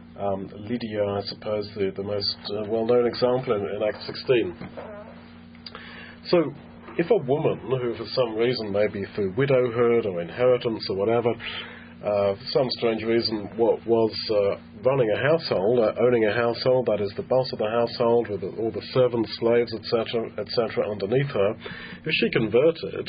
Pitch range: 90-120 Hz